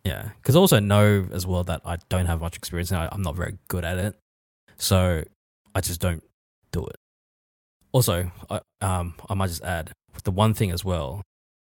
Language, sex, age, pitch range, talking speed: English, male, 20-39, 80-105 Hz, 200 wpm